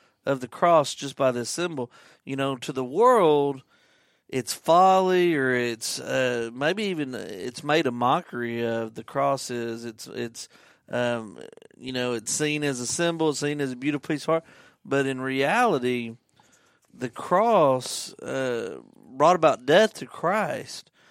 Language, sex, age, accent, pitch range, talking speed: English, male, 40-59, American, 125-155 Hz, 155 wpm